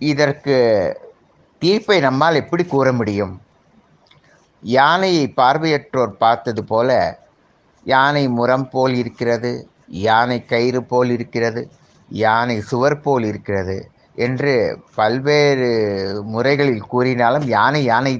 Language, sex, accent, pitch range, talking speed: Tamil, male, native, 115-150 Hz, 90 wpm